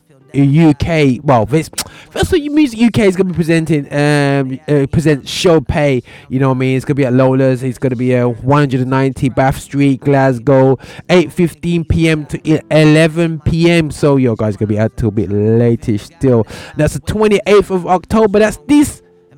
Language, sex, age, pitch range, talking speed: English, male, 20-39, 125-160 Hz, 180 wpm